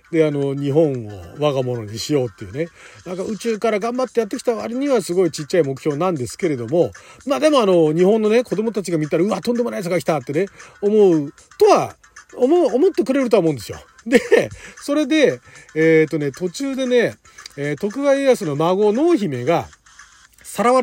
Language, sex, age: Japanese, male, 40-59